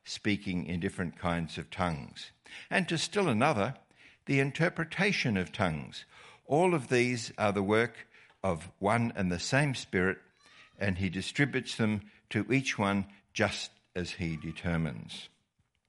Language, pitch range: English, 95-130 Hz